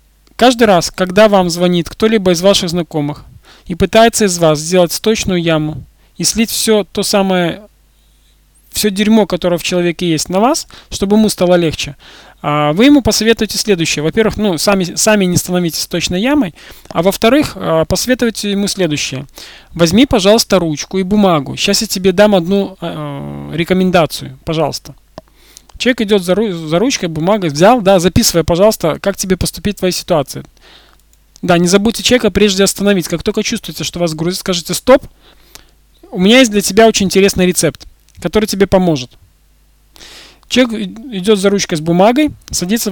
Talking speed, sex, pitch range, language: 150 wpm, male, 165-210 Hz, Russian